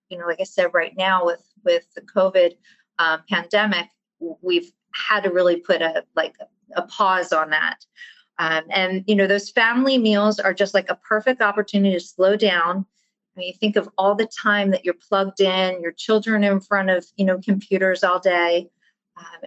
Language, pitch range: English, 185-225 Hz